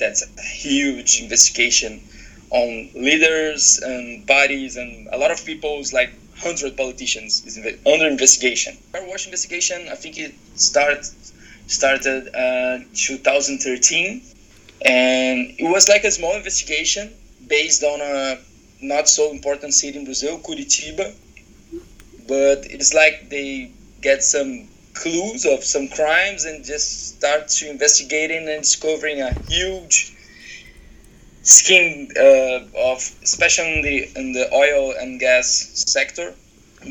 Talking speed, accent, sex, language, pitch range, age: 130 wpm, Brazilian, male, English, 130-170 Hz, 20-39